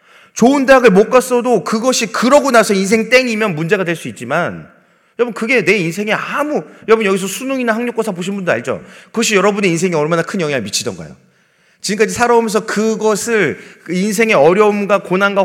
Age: 30-49